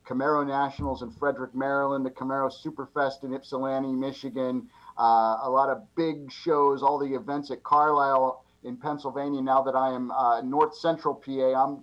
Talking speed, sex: 165 wpm, male